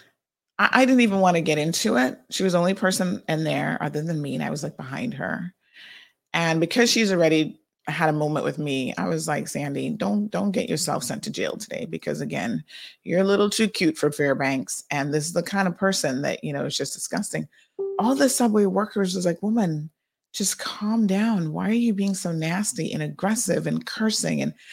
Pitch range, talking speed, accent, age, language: 155-215 Hz, 215 wpm, American, 30-49, English